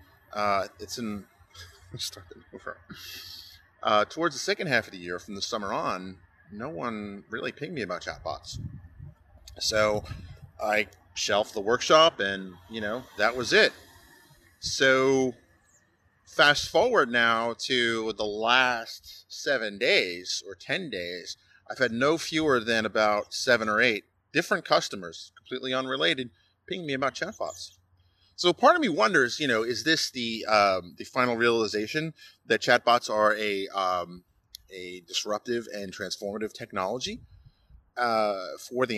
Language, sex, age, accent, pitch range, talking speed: English, male, 30-49, American, 90-125 Hz, 135 wpm